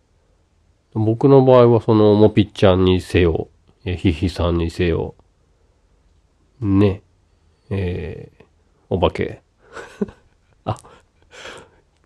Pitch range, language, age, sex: 85-110 Hz, Japanese, 40-59, male